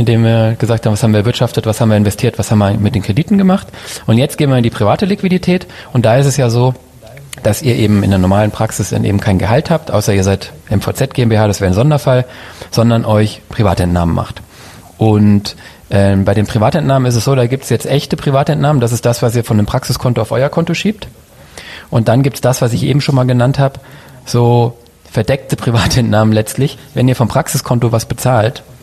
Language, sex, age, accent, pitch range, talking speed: German, male, 30-49, German, 110-130 Hz, 220 wpm